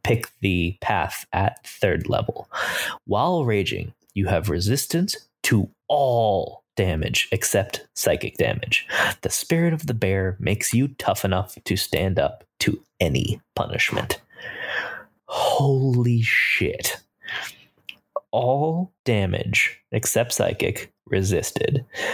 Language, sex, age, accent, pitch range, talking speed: English, male, 20-39, American, 100-125 Hz, 105 wpm